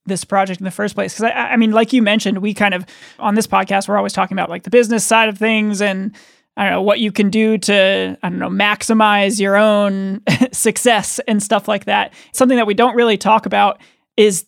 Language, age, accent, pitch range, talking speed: English, 20-39, American, 200-230 Hz, 235 wpm